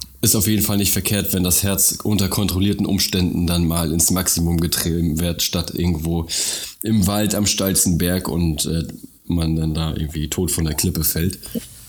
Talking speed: 180 wpm